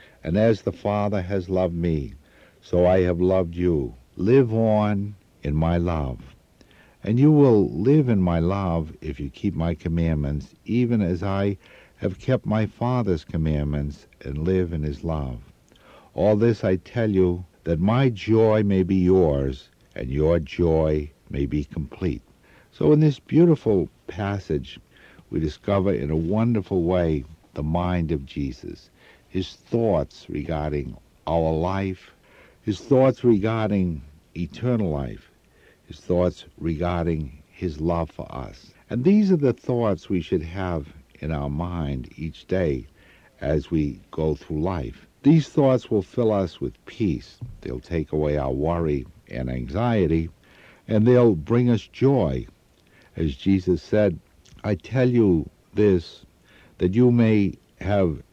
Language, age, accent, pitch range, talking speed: English, 60-79, American, 80-105 Hz, 145 wpm